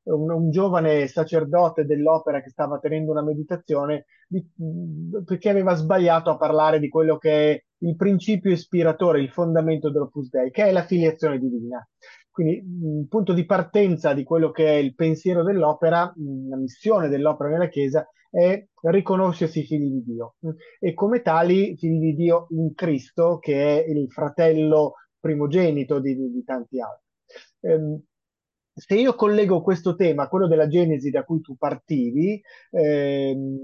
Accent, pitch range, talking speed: native, 150-185 Hz, 150 wpm